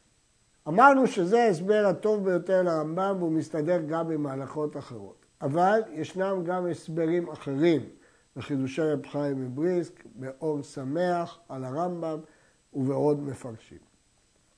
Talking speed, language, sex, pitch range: 105 wpm, Hebrew, male, 155-230 Hz